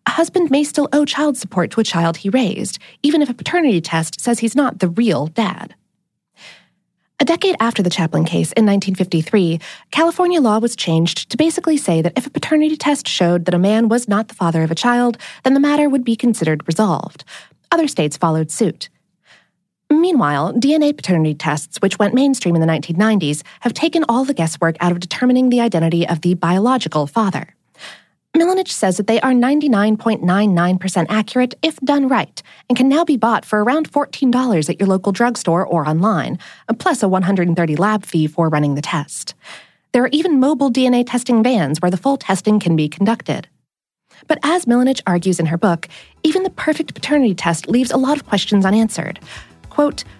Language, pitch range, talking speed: English, 175-275 Hz, 185 wpm